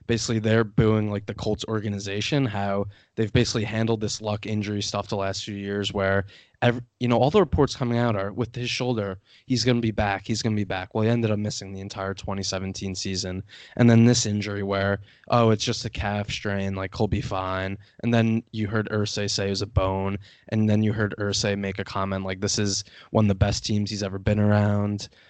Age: 20-39